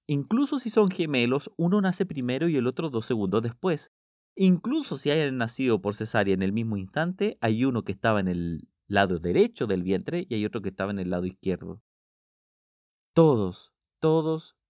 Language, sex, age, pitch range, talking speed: Spanish, male, 30-49, 95-160 Hz, 180 wpm